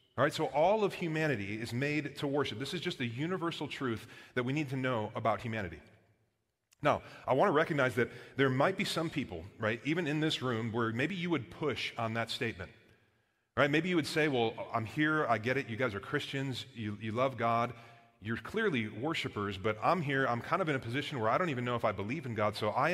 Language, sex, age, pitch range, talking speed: English, male, 30-49, 105-140 Hz, 240 wpm